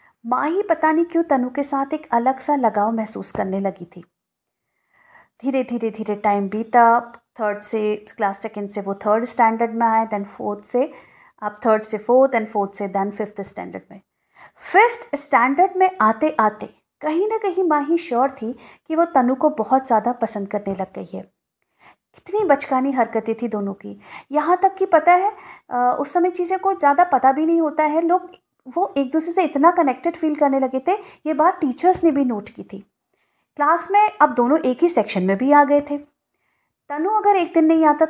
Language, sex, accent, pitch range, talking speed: Hindi, female, native, 230-320 Hz, 200 wpm